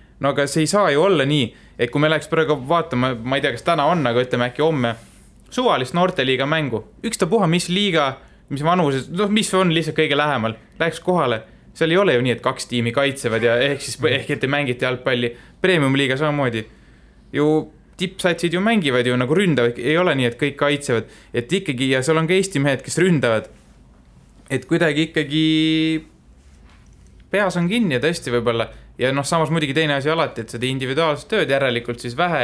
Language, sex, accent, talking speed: English, male, Finnish, 200 wpm